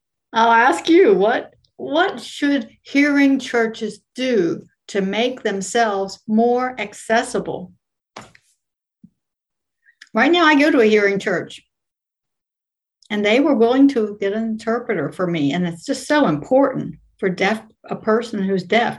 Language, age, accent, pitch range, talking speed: English, 60-79, American, 195-245 Hz, 135 wpm